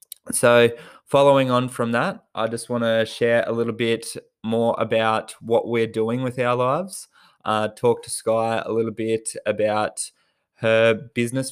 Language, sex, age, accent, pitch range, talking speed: English, male, 20-39, Australian, 110-115 Hz, 160 wpm